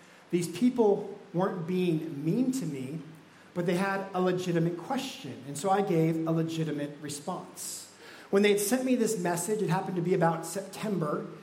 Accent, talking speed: American, 175 wpm